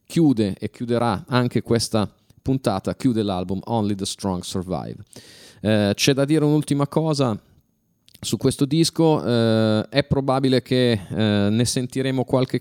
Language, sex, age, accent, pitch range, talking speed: Italian, male, 30-49, native, 105-130 Hz, 140 wpm